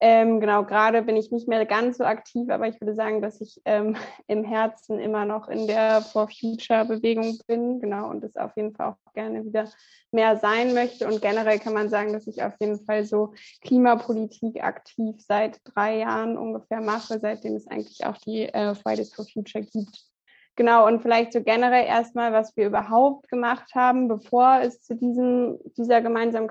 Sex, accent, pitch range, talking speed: female, German, 215-240 Hz, 190 wpm